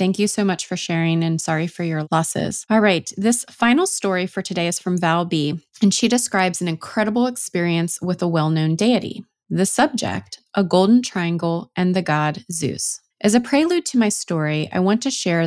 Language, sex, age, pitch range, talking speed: English, female, 20-39, 165-200 Hz, 200 wpm